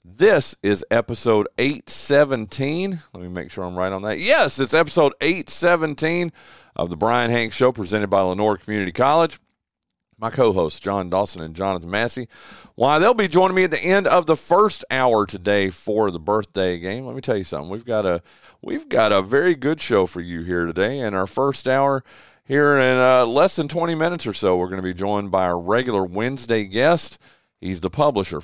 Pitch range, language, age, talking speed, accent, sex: 100-145 Hz, English, 40-59, 200 wpm, American, male